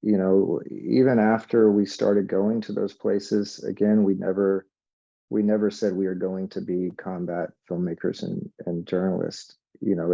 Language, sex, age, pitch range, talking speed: English, male, 40-59, 85-95 Hz, 165 wpm